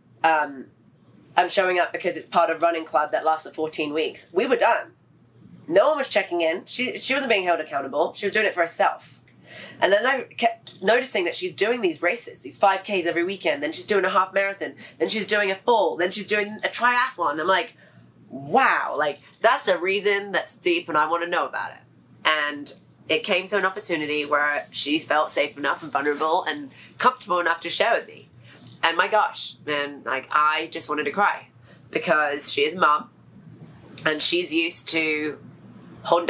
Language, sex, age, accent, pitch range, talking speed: English, female, 30-49, British, 150-195 Hz, 200 wpm